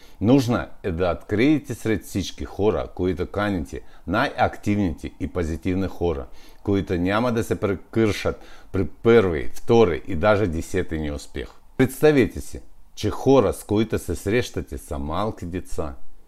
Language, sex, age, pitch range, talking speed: Bulgarian, male, 50-69, 85-110 Hz, 140 wpm